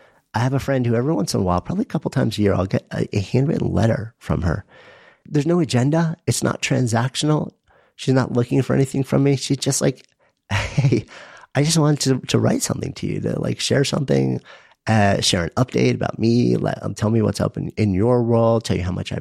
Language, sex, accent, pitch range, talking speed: English, male, American, 110-140 Hz, 230 wpm